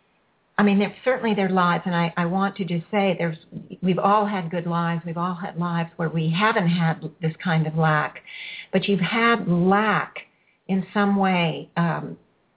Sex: female